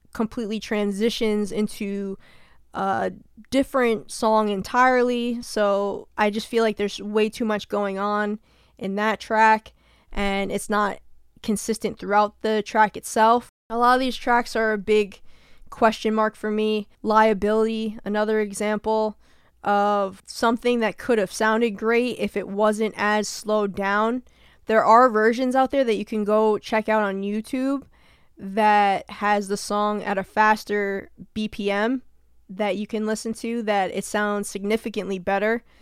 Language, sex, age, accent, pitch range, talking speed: English, female, 10-29, American, 205-225 Hz, 145 wpm